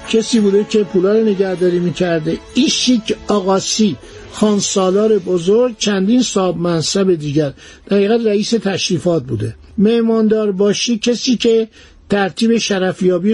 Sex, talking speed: male, 110 wpm